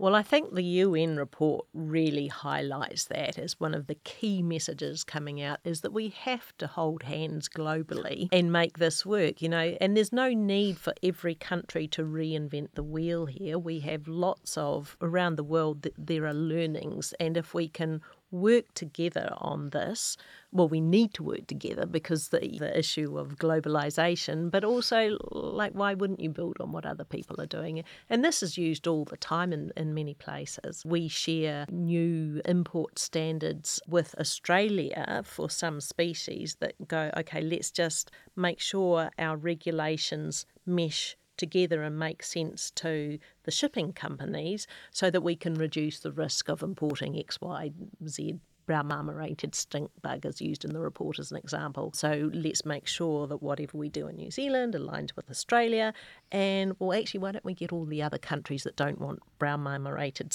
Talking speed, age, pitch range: 180 wpm, 40-59, 155-185 Hz